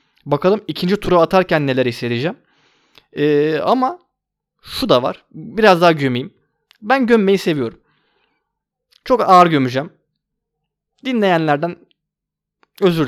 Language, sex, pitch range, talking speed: Turkish, male, 140-200 Hz, 95 wpm